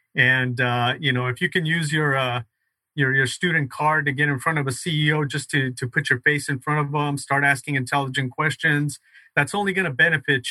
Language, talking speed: English, 230 wpm